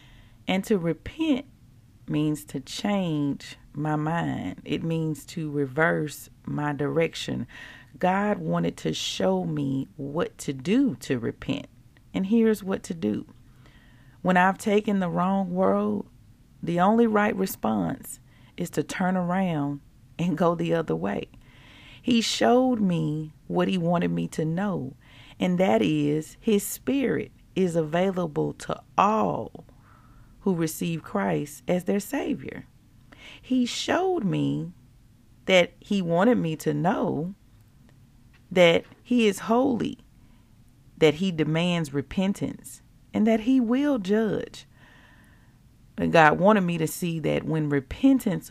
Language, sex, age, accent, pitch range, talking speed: English, female, 40-59, American, 135-195 Hz, 125 wpm